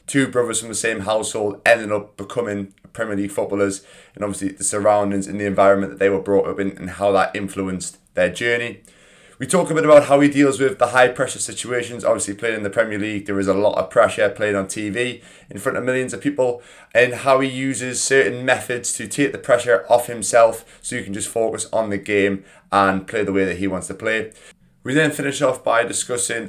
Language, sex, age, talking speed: English, male, 20-39, 225 wpm